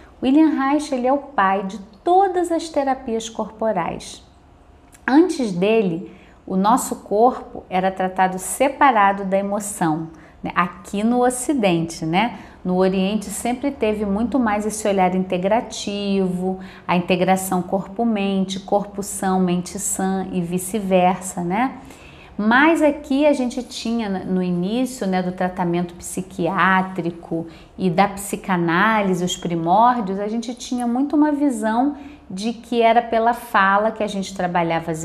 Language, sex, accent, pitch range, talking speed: Portuguese, female, Brazilian, 185-245 Hz, 130 wpm